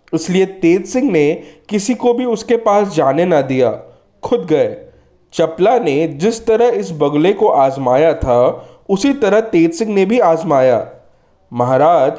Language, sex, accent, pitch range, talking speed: Hindi, male, native, 150-225 Hz, 155 wpm